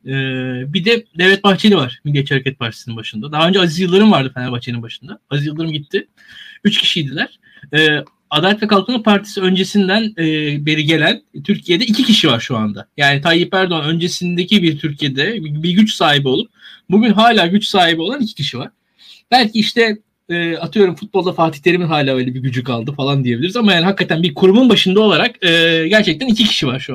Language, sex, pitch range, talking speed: Turkish, male, 155-215 Hz, 185 wpm